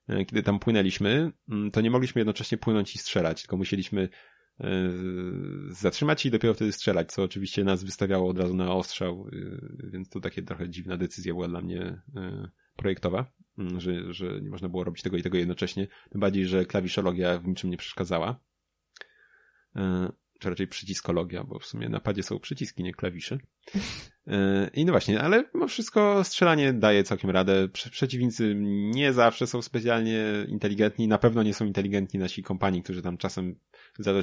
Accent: native